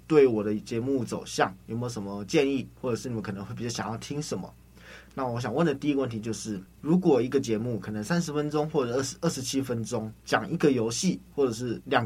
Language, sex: Chinese, male